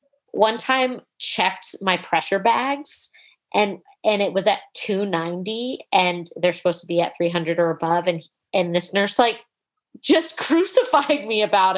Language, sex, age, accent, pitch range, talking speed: English, female, 30-49, American, 175-235 Hz, 155 wpm